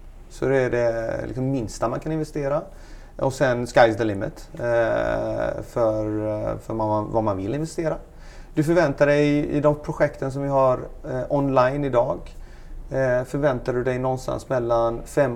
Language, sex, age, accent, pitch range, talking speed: Swedish, male, 30-49, native, 115-140 Hz, 160 wpm